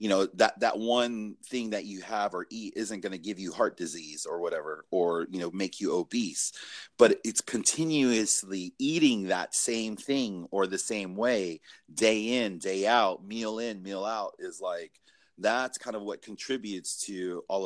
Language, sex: English, male